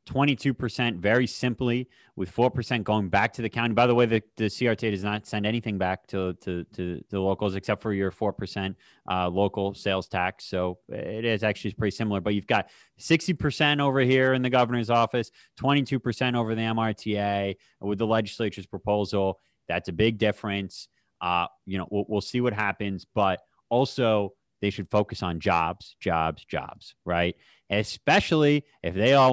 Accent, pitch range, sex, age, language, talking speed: American, 95-120 Hz, male, 30-49, English, 170 wpm